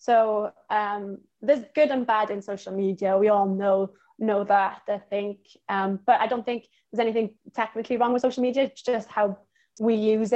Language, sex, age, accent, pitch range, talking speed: English, female, 20-39, British, 195-220 Hz, 190 wpm